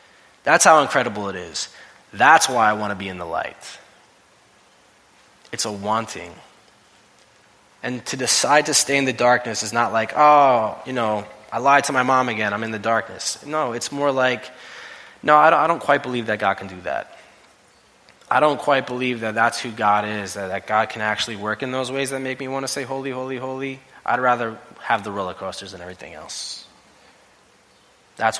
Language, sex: English, male